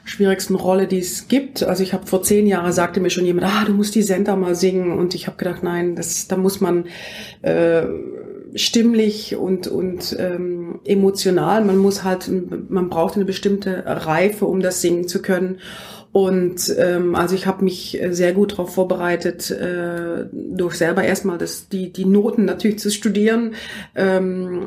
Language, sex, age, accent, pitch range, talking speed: German, female, 30-49, German, 175-200 Hz, 175 wpm